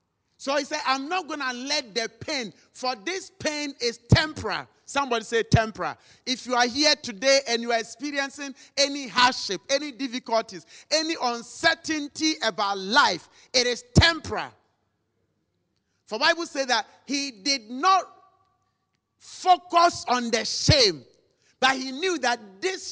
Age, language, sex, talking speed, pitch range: 40-59, English, male, 140 wpm, 170-255 Hz